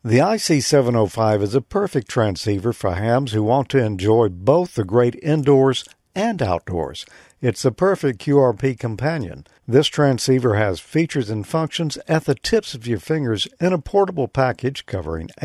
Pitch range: 110-155 Hz